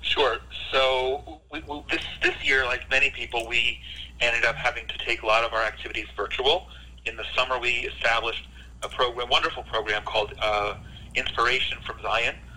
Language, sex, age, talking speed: English, male, 40-59, 175 wpm